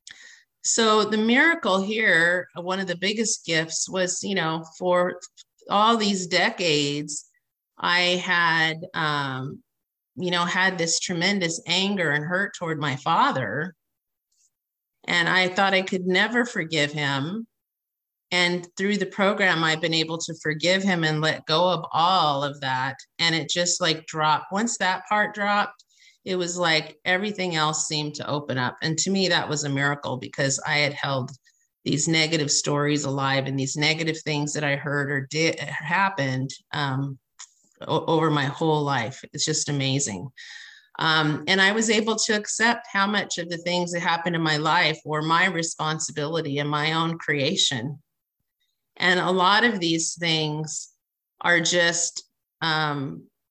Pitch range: 150-185 Hz